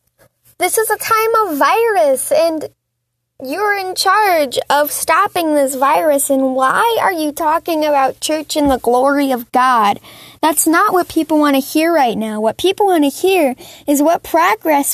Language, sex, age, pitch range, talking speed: English, female, 10-29, 265-335 Hz, 175 wpm